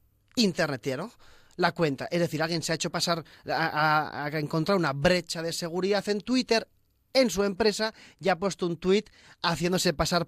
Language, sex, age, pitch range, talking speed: Spanish, male, 30-49, 145-180 Hz, 180 wpm